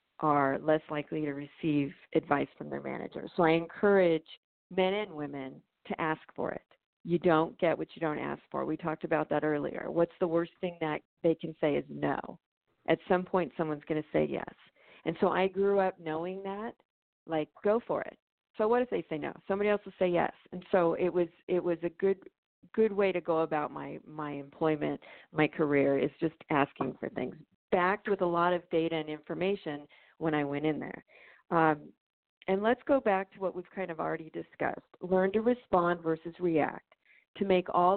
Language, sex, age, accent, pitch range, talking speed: English, female, 40-59, American, 155-190 Hz, 200 wpm